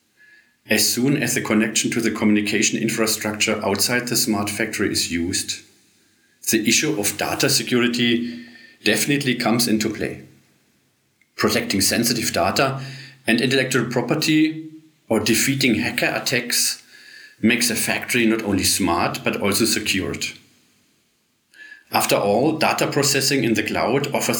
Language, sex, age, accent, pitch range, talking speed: English, male, 40-59, German, 110-130 Hz, 125 wpm